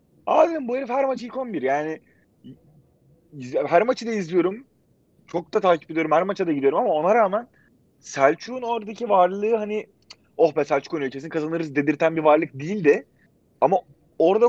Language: Turkish